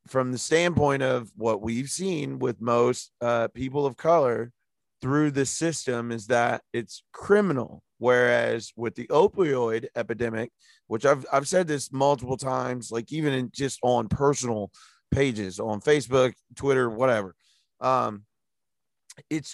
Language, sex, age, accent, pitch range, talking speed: English, male, 30-49, American, 115-135 Hz, 140 wpm